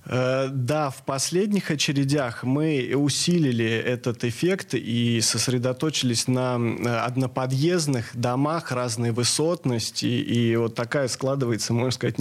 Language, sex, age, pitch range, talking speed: Russian, male, 20-39, 120-145 Hz, 105 wpm